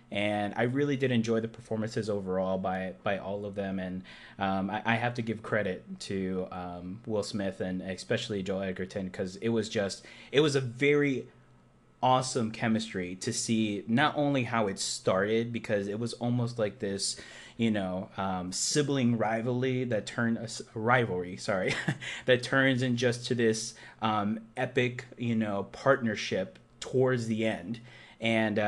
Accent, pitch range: American, 100-125 Hz